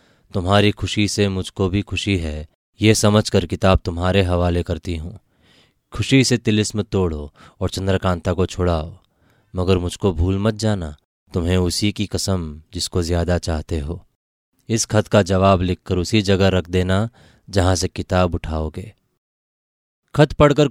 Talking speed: 145 wpm